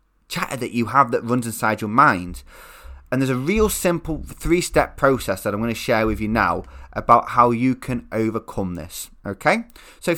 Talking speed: 190 wpm